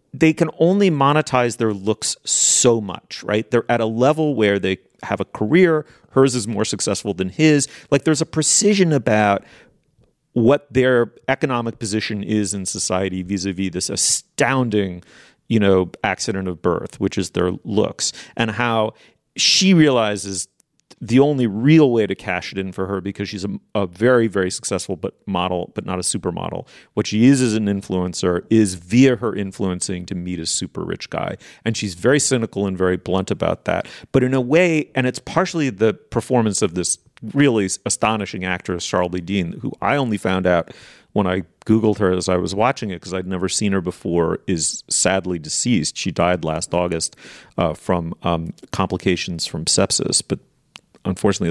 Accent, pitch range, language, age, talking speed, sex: American, 95-125 Hz, English, 40-59, 175 wpm, male